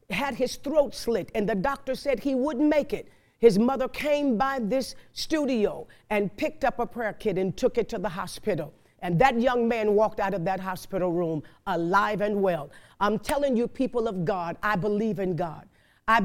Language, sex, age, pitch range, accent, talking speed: English, female, 50-69, 200-260 Hz, American, 200 wpm